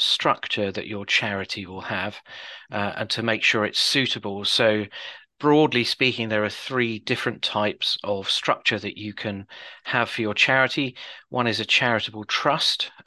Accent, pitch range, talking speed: British, 105-125 Hz, 160 wpm